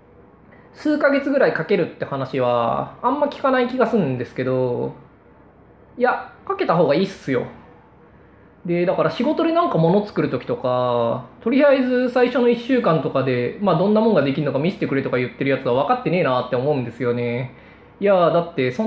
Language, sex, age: Japanese, male, 20-39